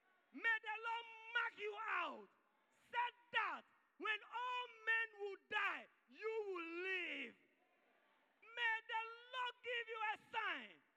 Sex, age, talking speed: male, 40-59, 125 wpm